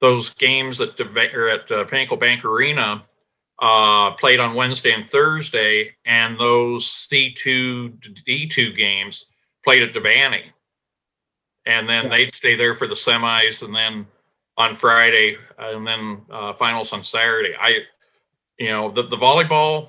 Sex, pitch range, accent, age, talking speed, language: male, 115-135 Hz, American, 40-59, 140 wpm, English